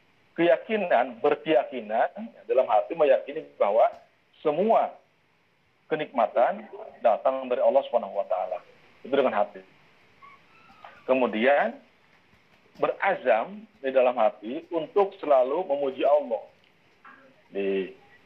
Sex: male